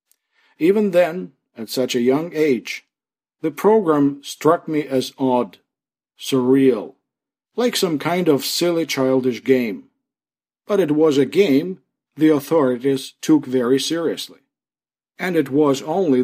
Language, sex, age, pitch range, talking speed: English, male, 50-69, 130-160 Hz, 130 wpm